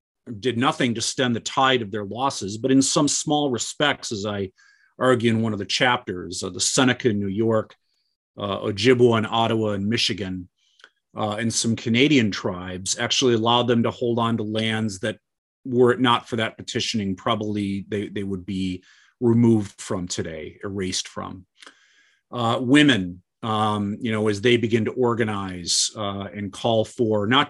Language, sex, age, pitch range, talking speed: English, male, 40-59, 100-125 Hz, 170 wpm